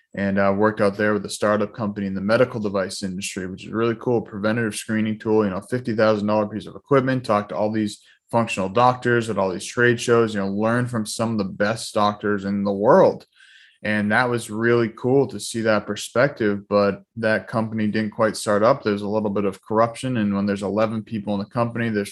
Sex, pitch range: male, 105-115 Hz